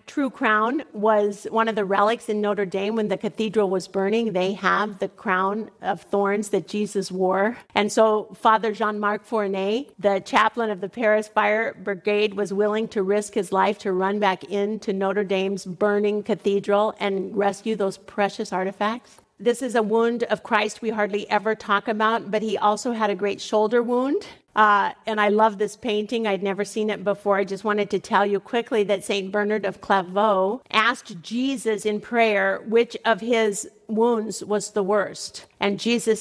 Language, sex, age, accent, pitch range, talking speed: English, female, 50-69, American, 195-220 Hz, 180 wpm